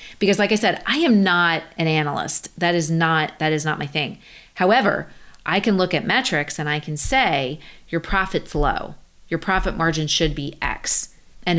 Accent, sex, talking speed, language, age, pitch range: American, female, 190 wpm, English, 30-49, 155-195 Hz